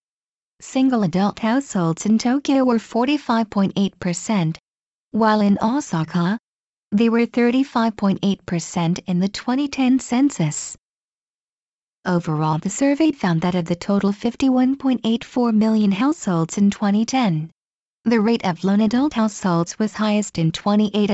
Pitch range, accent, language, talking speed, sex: 190-240 Hz, American, English, 115 wpm, female